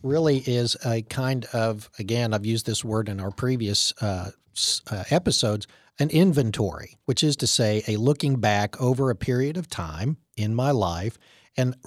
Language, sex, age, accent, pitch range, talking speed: English, male, 50-69, American, 110-140 Hz, 170 wpm